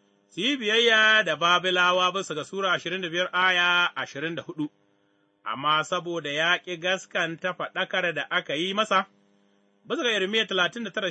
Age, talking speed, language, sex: 30-49, 135 wpm, English, male